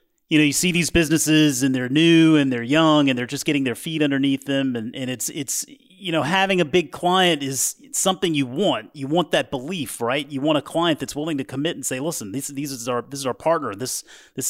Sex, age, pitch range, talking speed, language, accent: male, 30-49, 110-155 Hz, 250 wpm, English, American